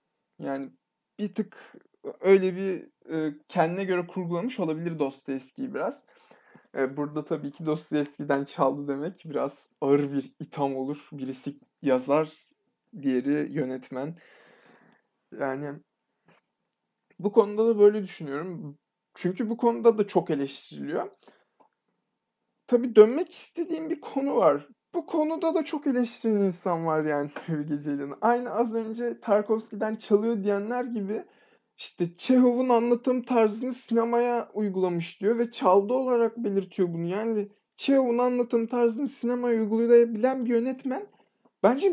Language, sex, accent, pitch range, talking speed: Turkish, male, native, 160-240 Hz, 120 wpm